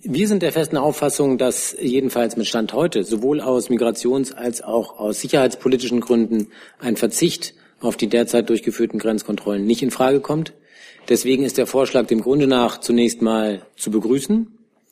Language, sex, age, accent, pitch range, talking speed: German, male, 40-59, German, 115-140 Hz, 160 wpm